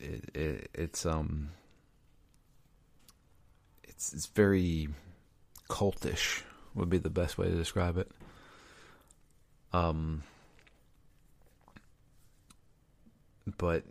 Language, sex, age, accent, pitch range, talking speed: English, male, 40-59, American, 80-100 Hz, 80 wpm